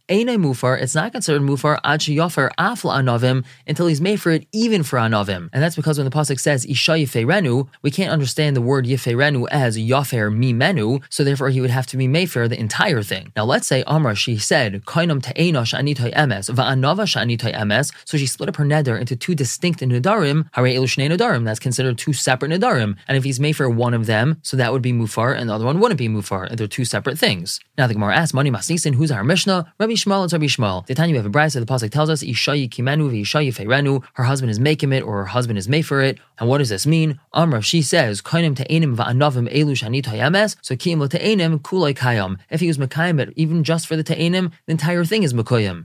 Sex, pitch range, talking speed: male, 125-160 Hz, 185 wpm